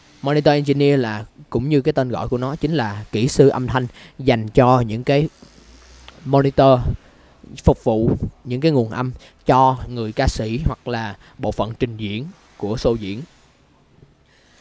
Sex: male